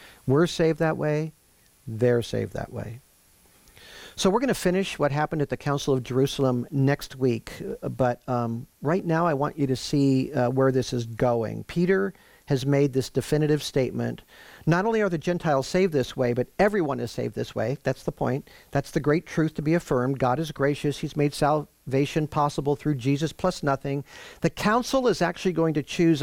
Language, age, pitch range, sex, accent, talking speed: English, 50-69, 125-155 Hz, male, American, 190 wpm